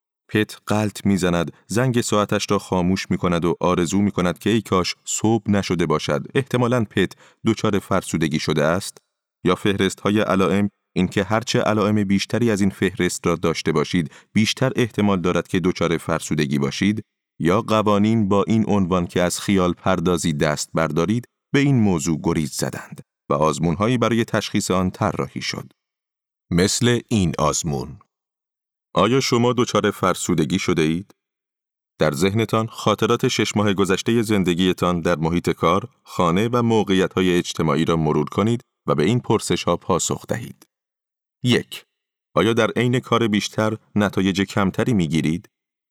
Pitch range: 90-110 Hz